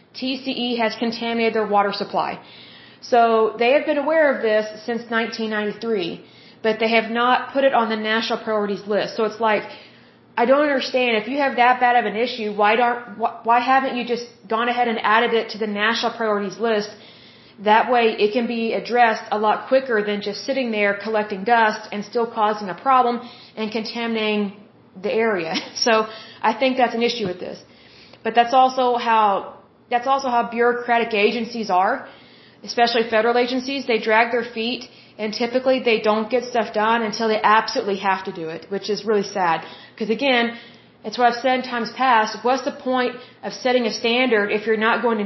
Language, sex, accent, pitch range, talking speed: Hindi, female, American, 215-240 Hz, 190 wpm